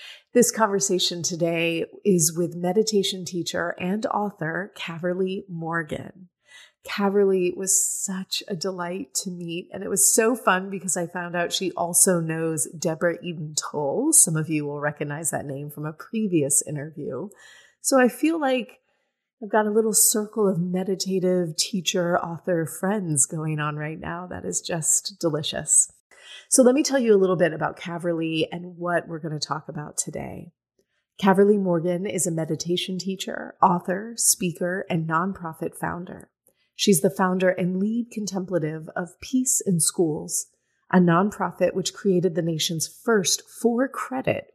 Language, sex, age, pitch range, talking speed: English, female, 30-49, 165-195 Hz, 150 wpm